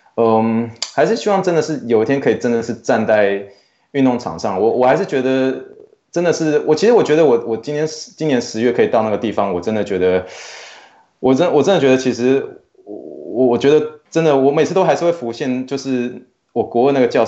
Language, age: Chinese, 20-39